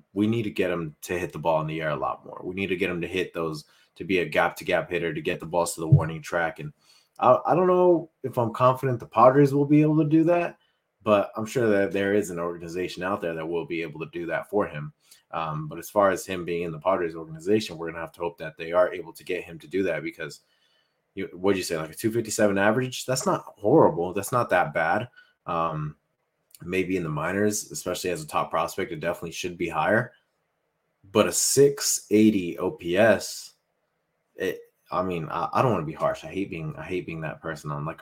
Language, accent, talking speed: English, American, 240 wpm